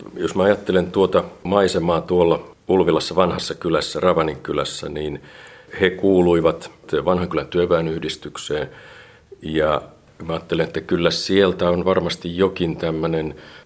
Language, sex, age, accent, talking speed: Finnish, male, 50-69, native, 105 wpm